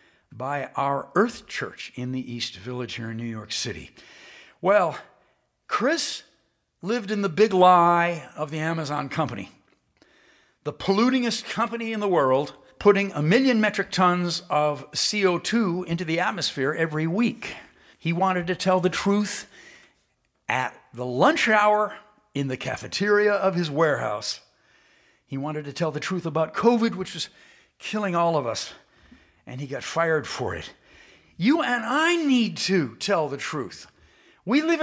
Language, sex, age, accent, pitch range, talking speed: English, male, 60-79, American, 155-230 Hz, 150 wpm